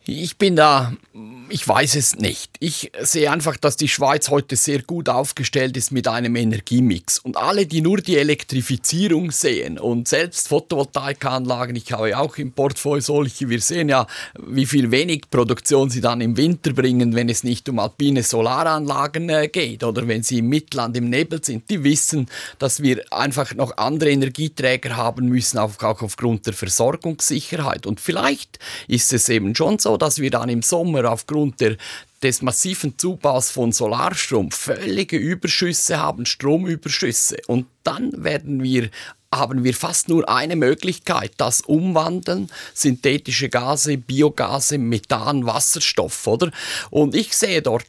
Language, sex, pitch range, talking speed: German, male, 120-155 Hz, 155 wpm